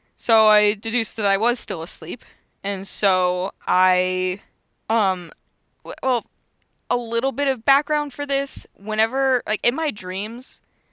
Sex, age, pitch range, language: female, 10-29, 175-230 Hz, English